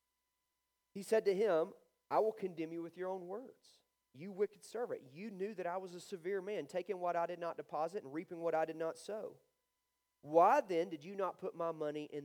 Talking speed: 220 wpm